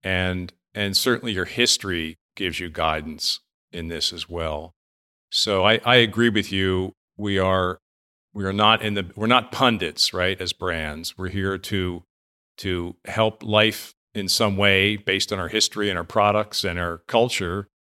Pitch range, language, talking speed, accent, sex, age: 95-125 Hz, English, 170 wpm, American, male, 50-69